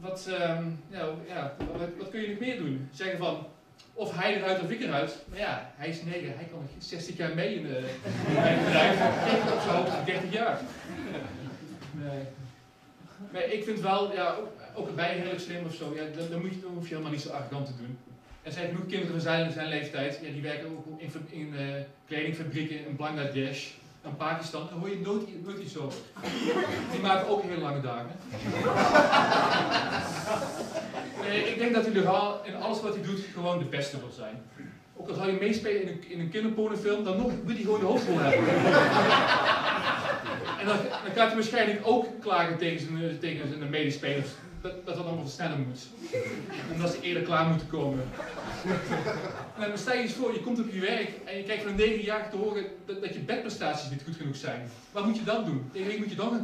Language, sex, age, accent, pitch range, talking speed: Dutch, male, 30-49, Dutch, 150-205 Hz, 195 wpm